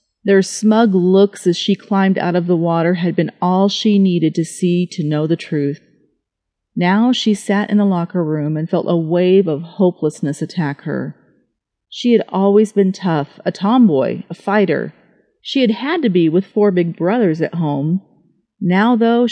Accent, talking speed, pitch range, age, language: American, 180 wpm, 165-220 Hz, 40-59, English